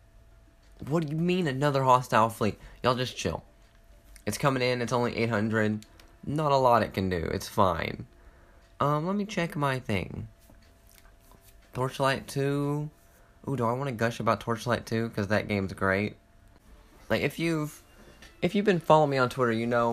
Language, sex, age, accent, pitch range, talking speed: English, male, 20-39, American, 95-130 Hz, 170 wpm